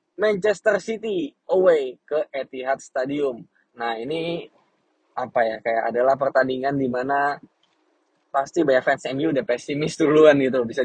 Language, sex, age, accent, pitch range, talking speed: Indonesian, male, 10-29, native, 125-165 Hz, 135 wpm